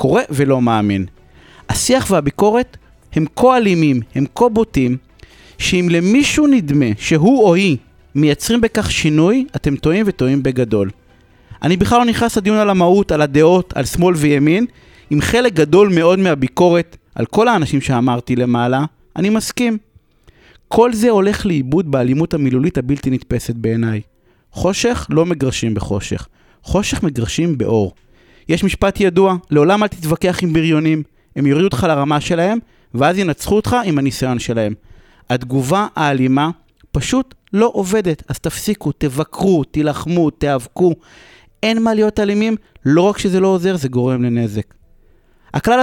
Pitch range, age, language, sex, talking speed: 130-200 Hz, 30-49, Hebrew, male, 140 wpm